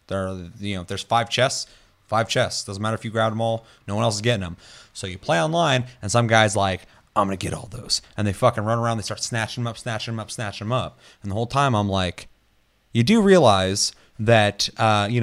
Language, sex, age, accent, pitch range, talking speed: English, male, 30-49, American, 95-120 Hz, 250 wpm